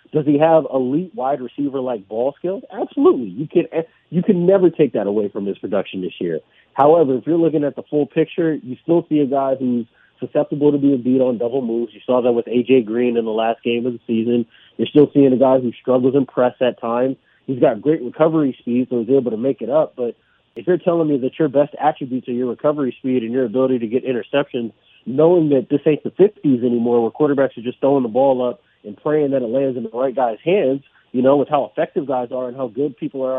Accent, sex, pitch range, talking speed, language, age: American, male, 125-150 Hz, 245 wpm, English, 30-49